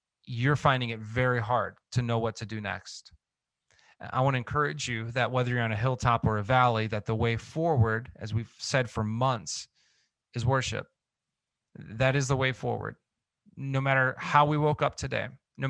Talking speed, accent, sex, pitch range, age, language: 185 wpm, American, male, 115-140 Hz, 30-49, English